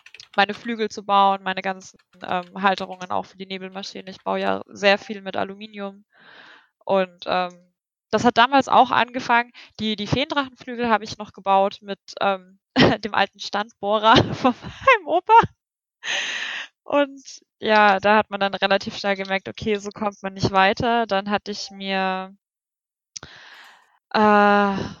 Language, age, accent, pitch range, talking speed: German, 20-39, German, 195-225 Hz, 145 wpm